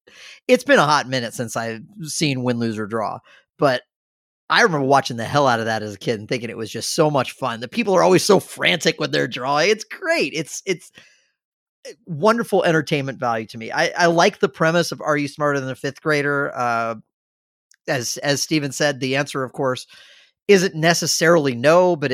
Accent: American